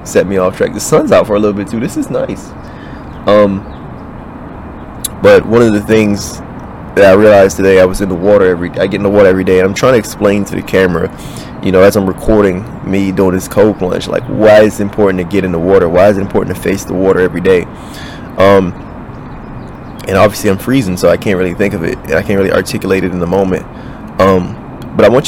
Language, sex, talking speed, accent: English, male, 235 wpm, American